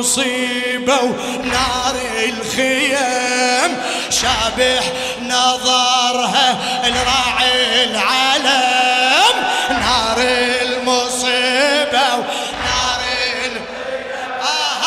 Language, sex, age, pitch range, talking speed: Arabic, male, 20-39, 225-255 Hz, 45 wpm